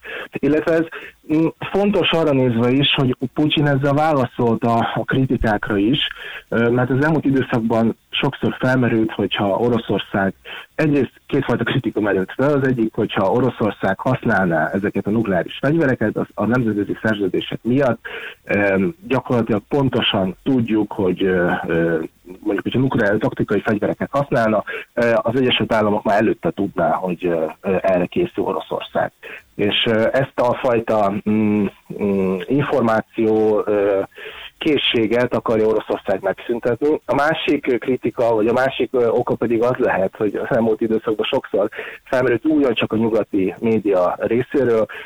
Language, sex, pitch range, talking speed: Hungarian, male, 100-130 Hz, 125 wpm